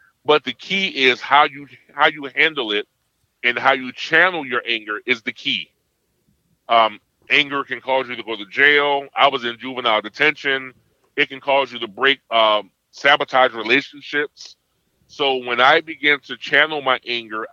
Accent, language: American, English